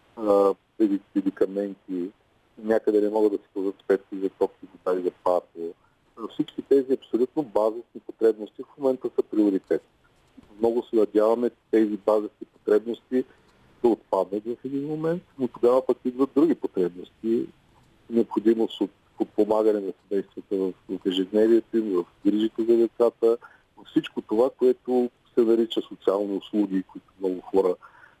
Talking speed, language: 135 wpm, Bulgarian